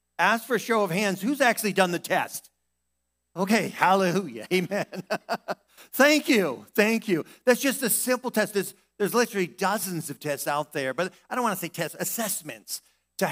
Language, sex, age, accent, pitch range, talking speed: English, male, 50-69, American, 150-200 Hz, 180 wpm